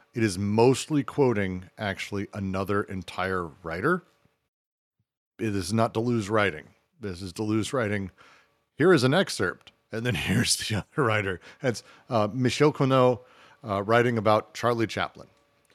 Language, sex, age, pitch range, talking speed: English, male, 40-59, 100-125 Hz, 135 wpm